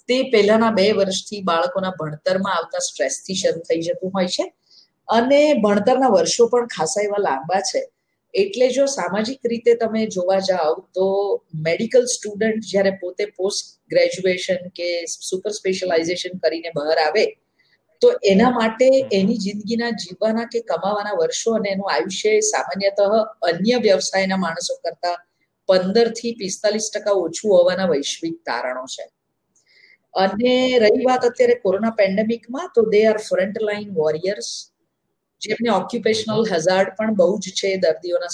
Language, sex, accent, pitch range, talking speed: Gujarati, female, native, 175-220 Hz, 90 wpm